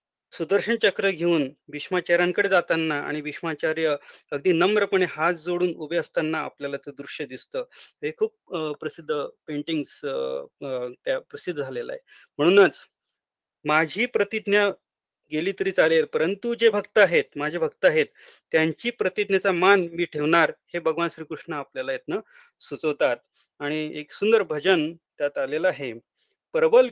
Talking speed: 80 wpm